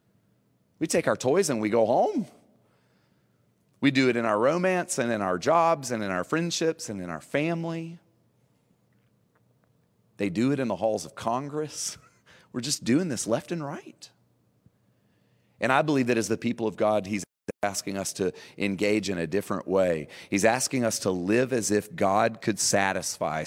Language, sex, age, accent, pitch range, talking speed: English, male, 30-49, American, 85-115 Hz, 175 wpm